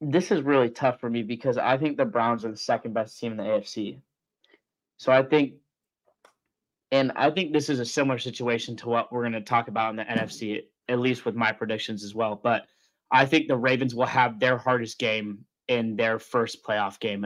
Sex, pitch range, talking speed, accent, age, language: male, 115-140 Hz, 215 wpm, American, 20-39, English